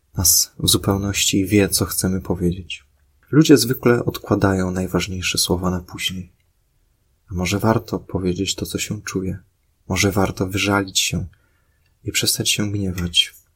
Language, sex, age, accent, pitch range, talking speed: Polish, male, 20-39, native, 90-105 Hz, 130 wpm